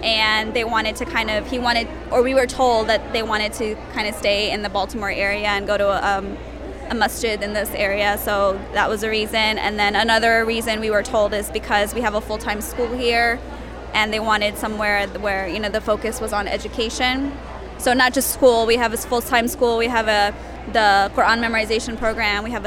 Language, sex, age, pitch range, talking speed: English, female, 20-39, 210-240 Hz, 220 wpm